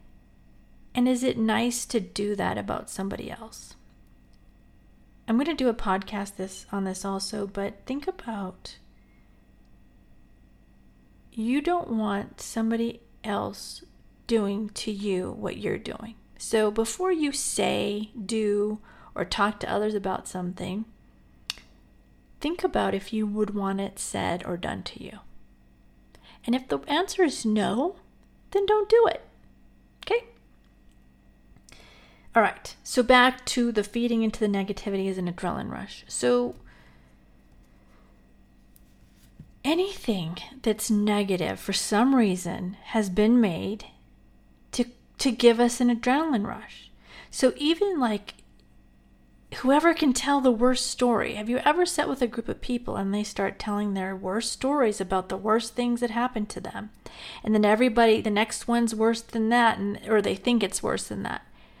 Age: 40-59